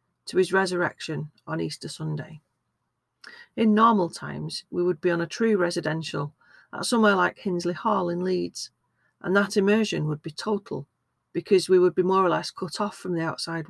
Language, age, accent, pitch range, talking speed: English, 40-59, British, 155-190 Hz, 180 wpm